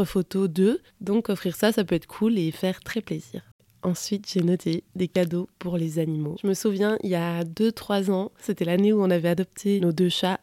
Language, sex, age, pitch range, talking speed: French, female, 20-39, 175-205 Hz, 220 wpm